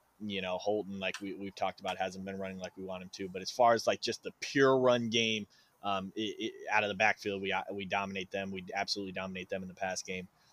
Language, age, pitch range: English, 20-39, 95-110 Hz